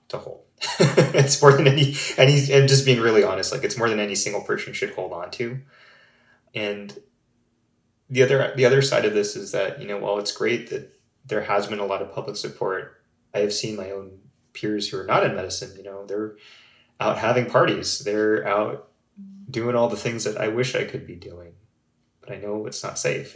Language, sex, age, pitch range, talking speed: English, male, 20-39, 100-120 Hz, 215 wpm